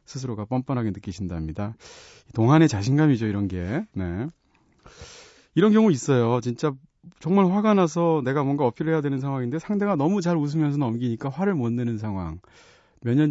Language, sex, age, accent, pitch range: Korean, male, 30-49, native, 105-145 Hz